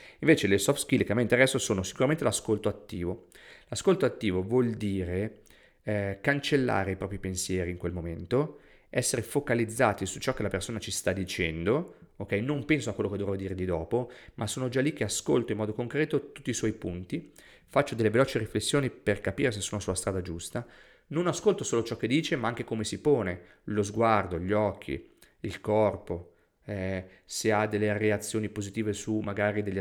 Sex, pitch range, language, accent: male, 95-125 Hz, Italian, native